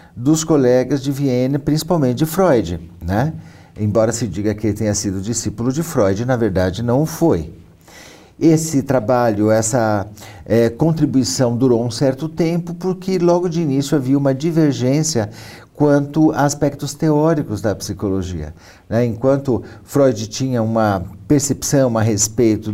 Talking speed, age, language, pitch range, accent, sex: 135 wpm, 50-69, Portuguese, 105-140 Hz, Brazilian, male